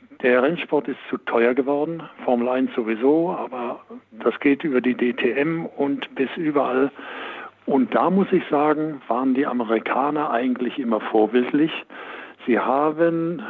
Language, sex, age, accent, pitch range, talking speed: German, male, 60-79, German, 120-155 Hz, 140 wpm